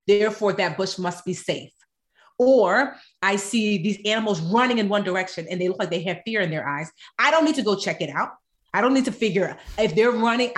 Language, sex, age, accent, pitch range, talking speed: English, female, 30-49, American, 190-240 Hz, 240 wpm